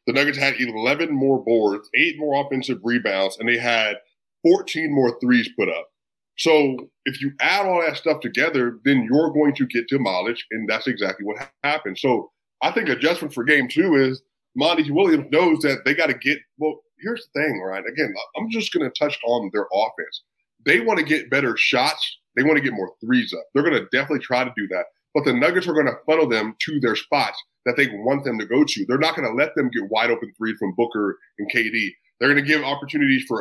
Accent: American